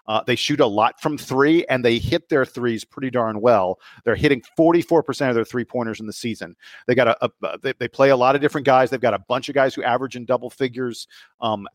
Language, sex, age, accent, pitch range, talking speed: English, male, 40-59, American, 115-140 Hz, 255 wpm